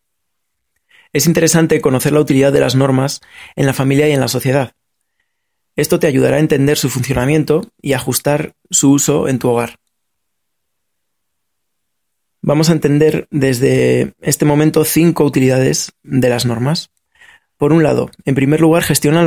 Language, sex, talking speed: Spanish, male, 145 wpm